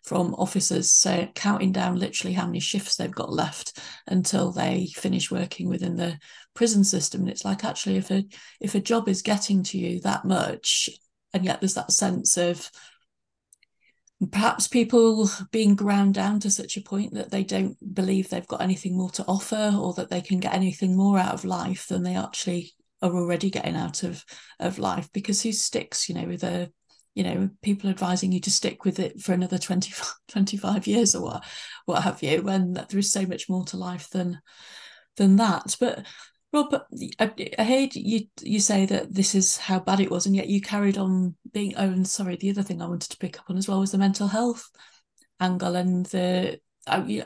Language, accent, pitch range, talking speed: English, British, 180-205 Hz, 200 wpm